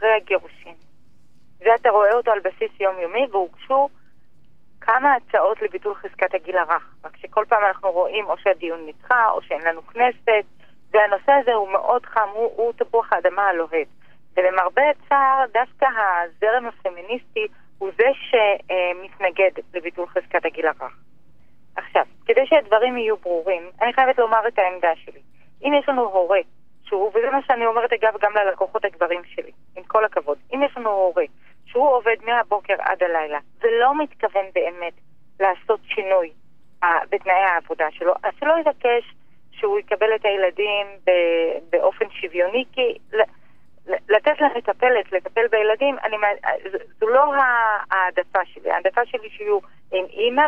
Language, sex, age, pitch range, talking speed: Hebrew, female, 30-49, 185-255 Hz, 140 wpm